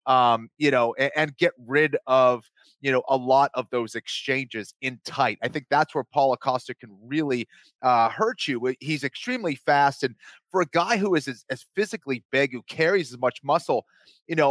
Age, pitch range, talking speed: 30-49, 135-165 Hz, 200 wpm